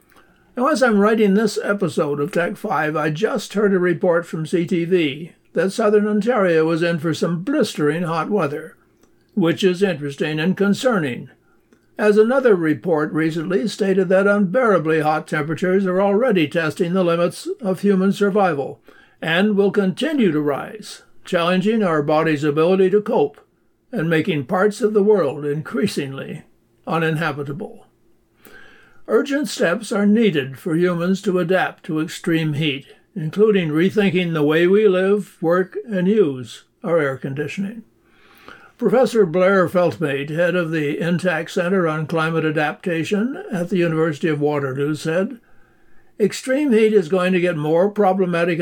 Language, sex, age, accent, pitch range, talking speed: English, male, 60-79, American, 160-200 Hz, 140 wpm